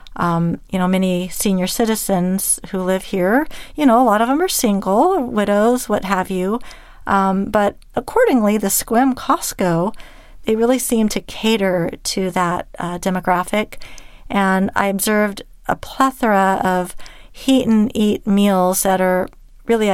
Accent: American